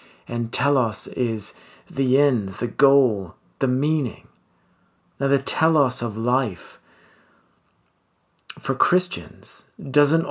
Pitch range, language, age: 105-140 Hz, English, 40-59